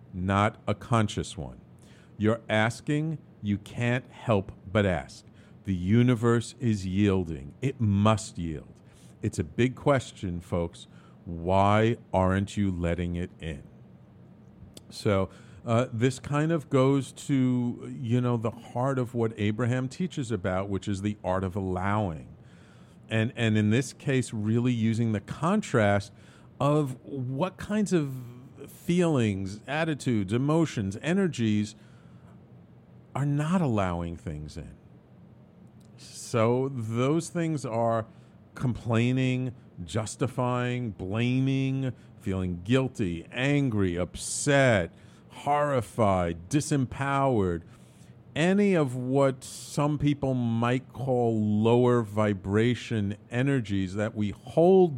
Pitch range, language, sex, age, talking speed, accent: 100-135 Hz, English, male, 50-69, 110 wpm, American